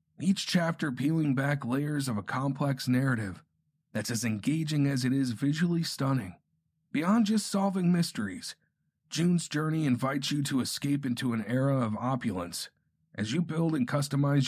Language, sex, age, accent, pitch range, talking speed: English, male, 40-59, American, 130-160 Hz, 155 wpm